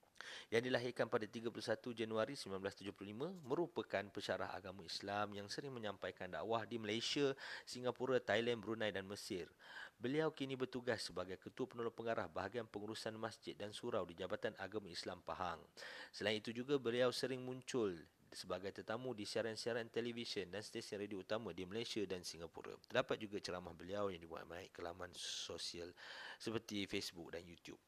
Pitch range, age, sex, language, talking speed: 95-115 Hz, 40-59, male, Malay, 155 wpm